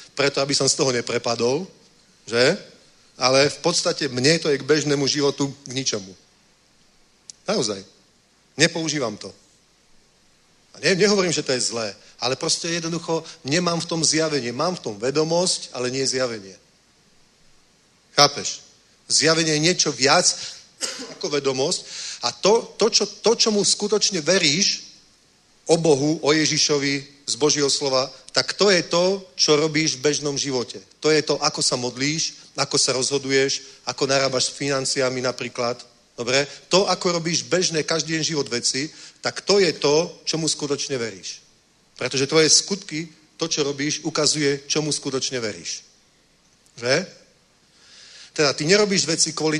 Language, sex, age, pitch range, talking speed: Czech, male, 40-59, 135-165 Hz, 145 wpm